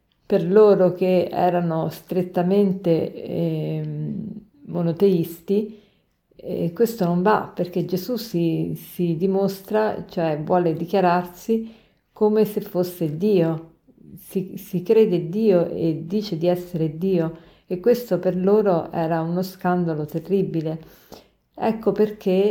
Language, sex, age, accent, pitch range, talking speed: Italian, female, 50-69, native, 170-210 Hz, 110 wpm